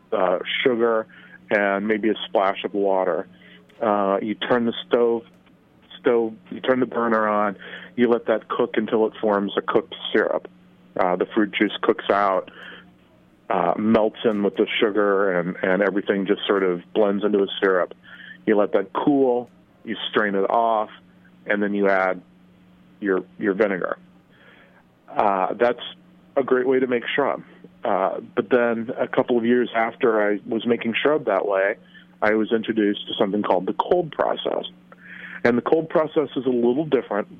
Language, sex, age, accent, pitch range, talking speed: English, male, 40-59, American, 100-120 Hz, 170 wpm